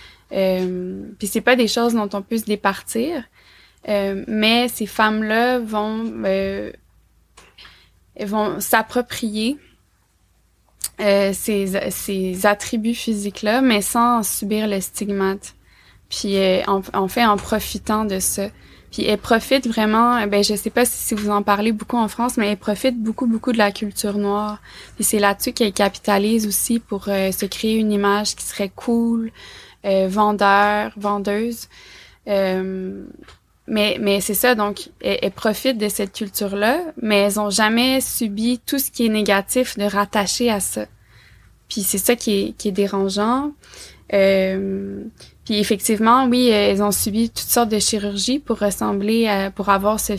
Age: 20-39